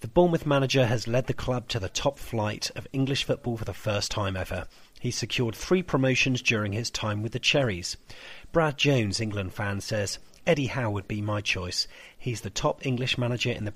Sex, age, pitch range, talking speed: male, 40-59, 105-135 Hz, 205 wpm